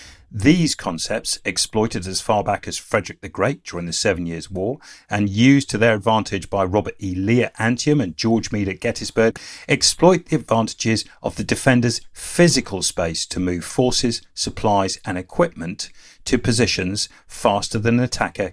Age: 50-69